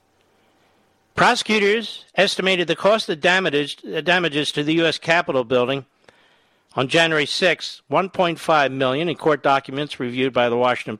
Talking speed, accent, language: 125 wpm, American, English